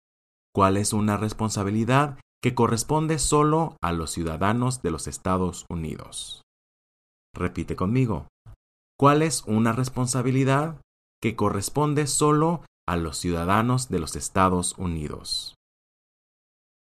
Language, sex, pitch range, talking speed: English, male, 90-130 Hz, 105 wpm